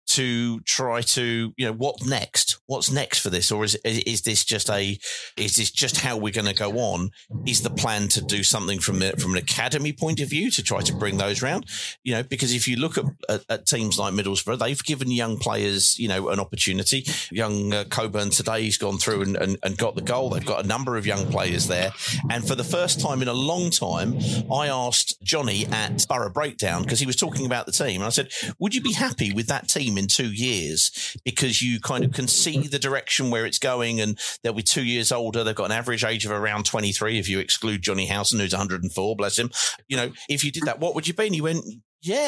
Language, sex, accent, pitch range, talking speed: English, male, British, 105-140 Hz, 240 wpm